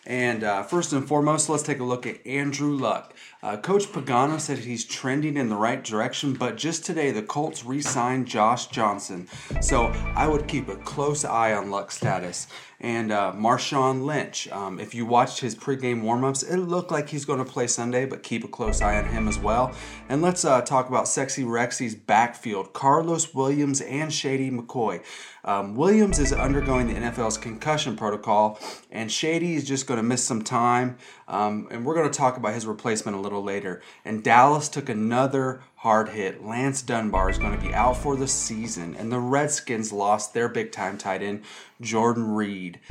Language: English